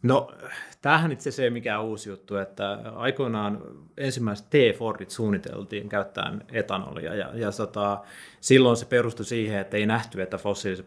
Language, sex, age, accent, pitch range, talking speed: Finnish, male, 30-49, native, 100-115 Hz, 150 wpm